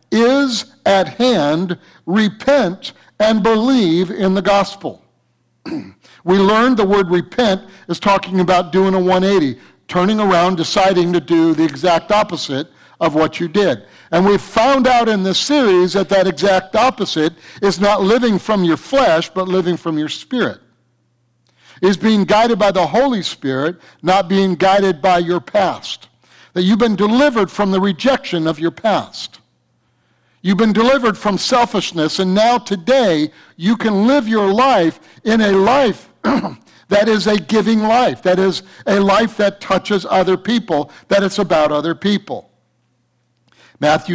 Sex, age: male, 60-79